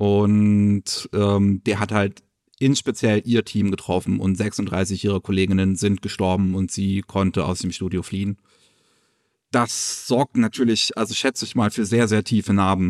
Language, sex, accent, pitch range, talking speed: German, male, German, 100-115 Hz, 165 wpm